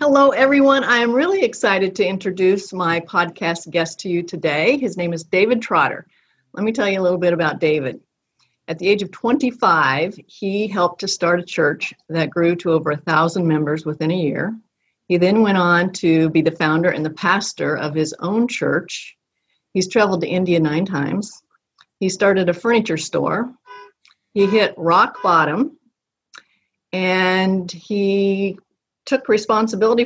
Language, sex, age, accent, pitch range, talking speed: English, female, 50-69, American, 165-205 Hz, 165 wpm